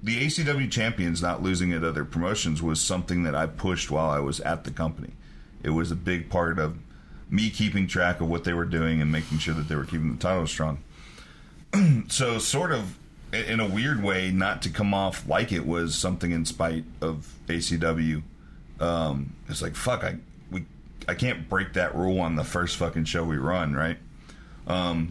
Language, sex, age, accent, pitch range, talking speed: English, male, 40-59, American, 80-95 Hz, 195 wpm